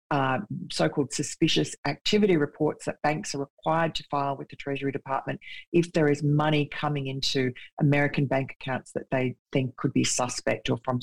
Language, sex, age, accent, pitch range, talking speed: English, female, 40-59, Australian, 130-150 Hz, 175 wpm